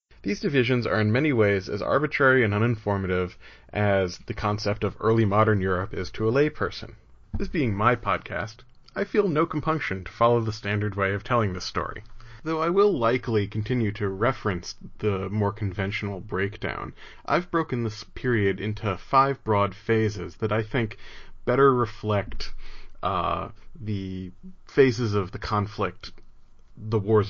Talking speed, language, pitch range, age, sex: 155 wpm, English, 100-120 Hz, 30-49, male